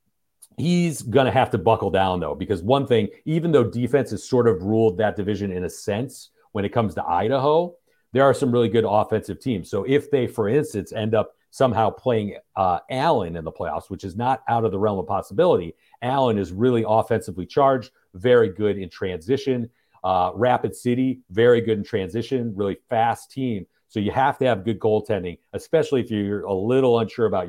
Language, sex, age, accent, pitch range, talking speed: English, male, 40-59, American, 100-125 Hz, 200 wpm